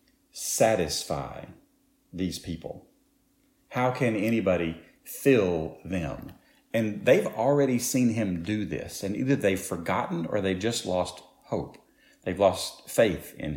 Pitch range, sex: 85-110 Hz, male